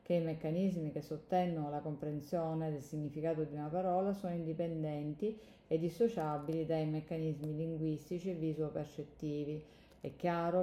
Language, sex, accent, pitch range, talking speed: Italian, female, native, 155-180 Hz, 130 wpm